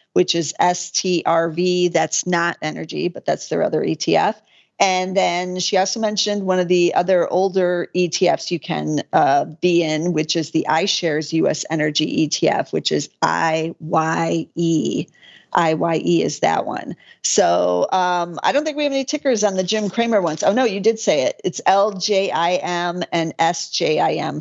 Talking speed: 160 wpm